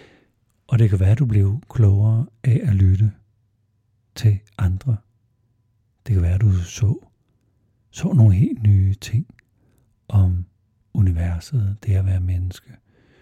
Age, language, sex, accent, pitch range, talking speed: 60-79, Danish, male, native, 100-115 Hz, 130 wpm